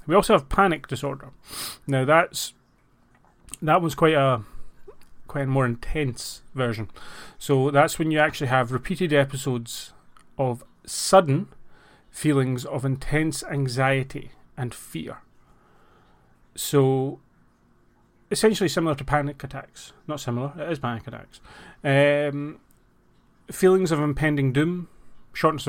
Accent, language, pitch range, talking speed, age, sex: British, English, 135-160 Hz, 115 wpm, 30-49, male